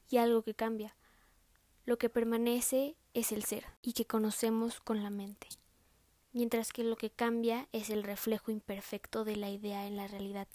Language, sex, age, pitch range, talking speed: English, female, 20-39, 205-235 Hz, 175 wpm